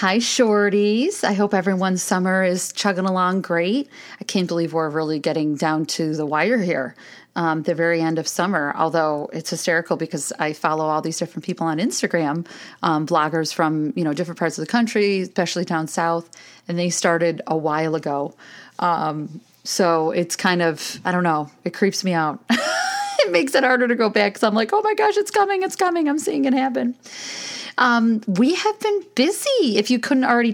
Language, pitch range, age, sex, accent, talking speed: English, 165-215 Hz, 30-49, female, American, 195 wpm